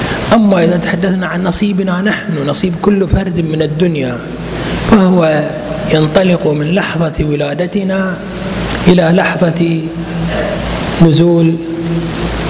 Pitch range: 145-180 Hz